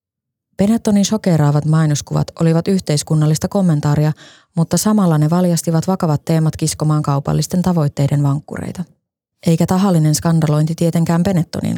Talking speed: 105 wpm